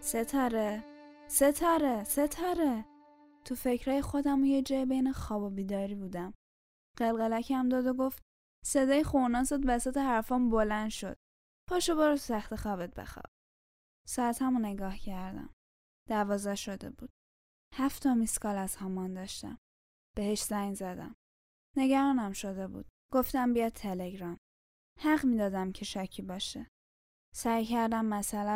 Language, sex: Persian, female